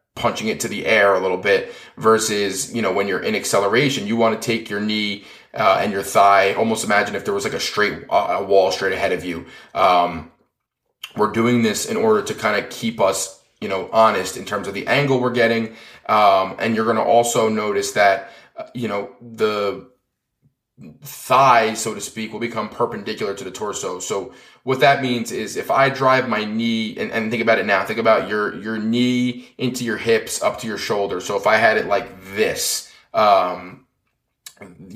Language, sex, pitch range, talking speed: English, male, 110-130 Hz, 205 wpm